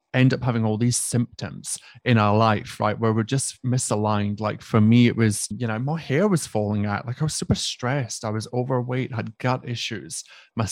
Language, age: English, 30-49